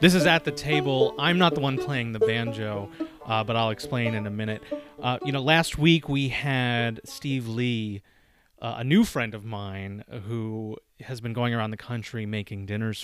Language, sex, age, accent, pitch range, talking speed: English, male, 30-49, American, 105-135 Hz, 200 wpm